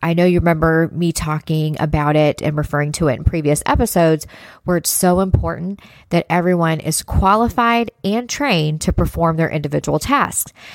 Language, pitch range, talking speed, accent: English, 155-185 Hz, 165 wpm, American